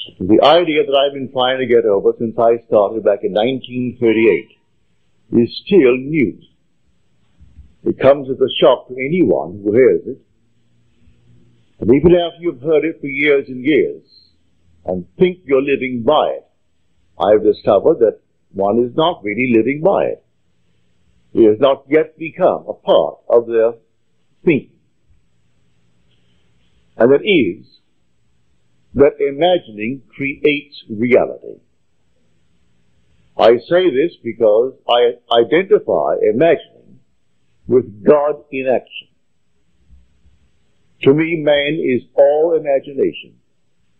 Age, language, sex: 60-79, English, male